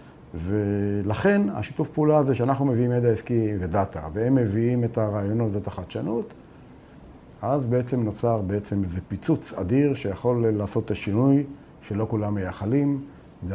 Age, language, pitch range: 50-69, Hebrew, 100-135 Hz